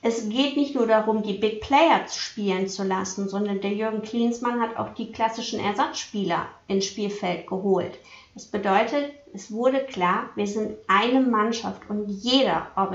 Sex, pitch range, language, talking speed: female, 195-235 Hz, German, 160 wpm